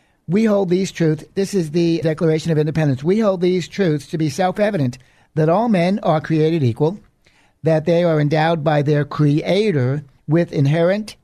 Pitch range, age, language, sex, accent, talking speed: 155-185 Hz, 60-79, English, male, American, 170 wpm